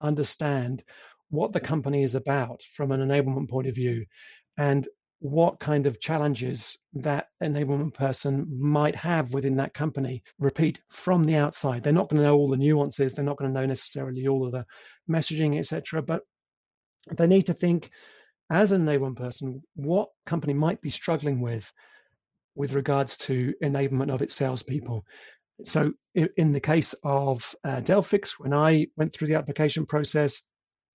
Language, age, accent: English, 40-59, British